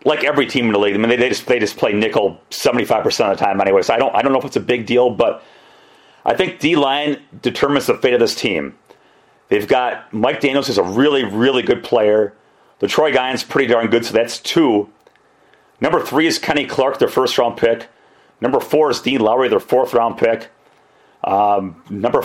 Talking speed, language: 195 wpm, English